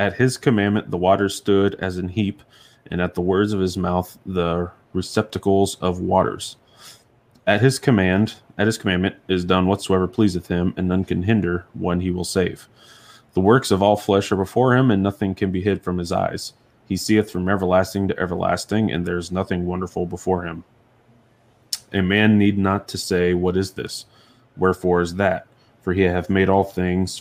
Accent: American